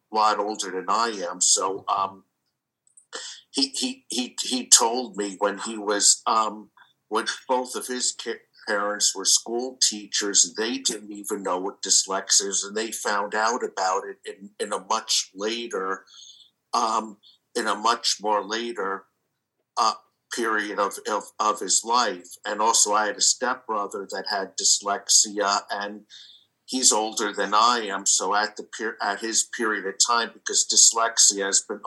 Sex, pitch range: male, 100-120 Hz